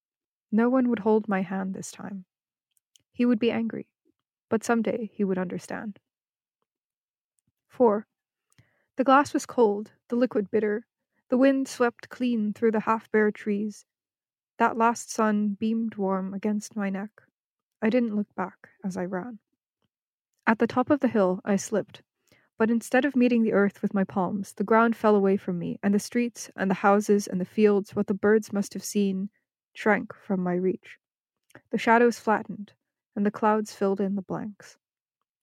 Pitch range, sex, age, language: 200-230 Hz, female, 20-39, English